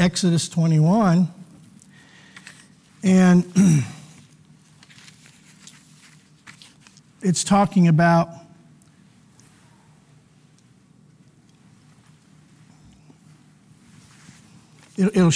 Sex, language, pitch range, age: male, English, 155-185 Hz, 50-69